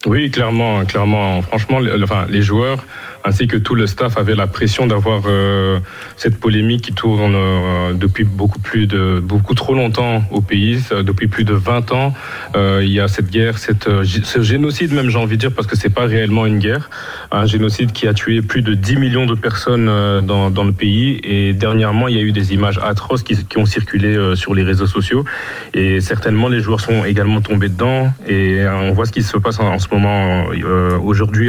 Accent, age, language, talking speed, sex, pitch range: French, 30-49, French, 215 wpm, male, 100-115 Hz